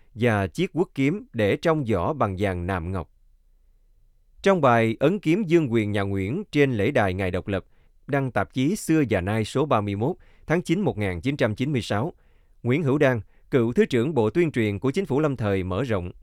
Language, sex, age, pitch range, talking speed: Vietnamese, male, 20-39, 100-145 Hz, 190 wpm